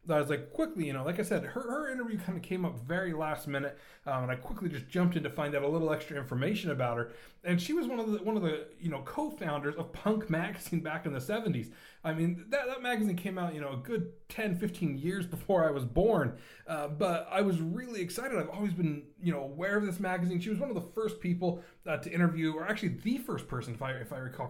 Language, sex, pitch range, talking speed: English, male, 145-190 Hz, 260 wpm